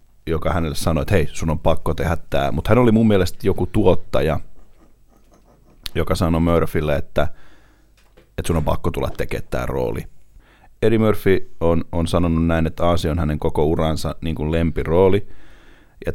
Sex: male